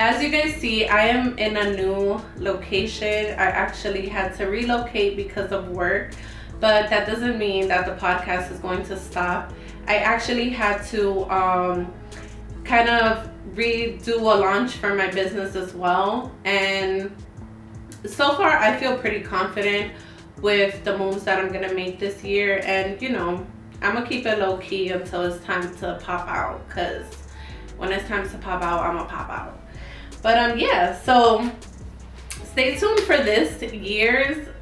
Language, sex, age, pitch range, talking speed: English, female, 20-39, 185-215 Hz, 170 wpm